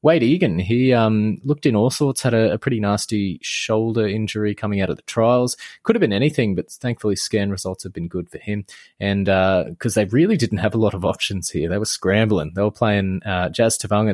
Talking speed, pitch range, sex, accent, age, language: 230 wpm, 100-120 Hz, male, Australian, 20-39, English